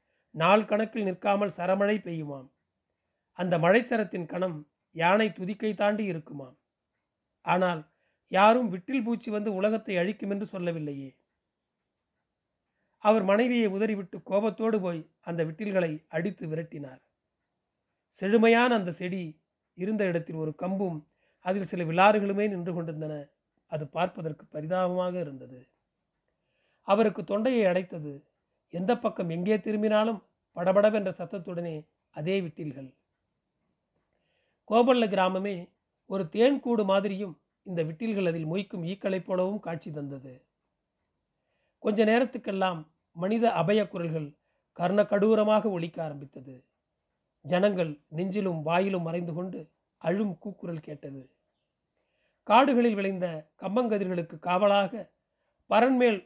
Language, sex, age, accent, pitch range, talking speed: Tamil, male, 30-49, native, 165-210 Hz, 95 wpm